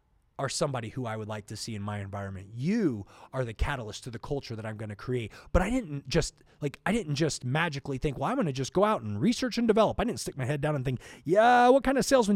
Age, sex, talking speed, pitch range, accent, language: 30-49, male, 275 wpm, 130-205 Hz, American, English